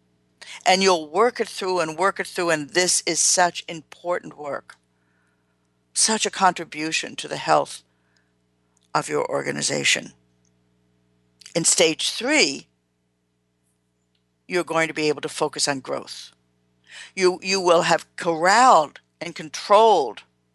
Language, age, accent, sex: English, 60-79, American, female